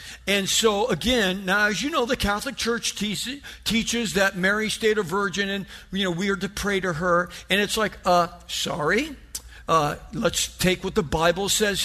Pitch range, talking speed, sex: 150-205 Hz, 195 wpm, male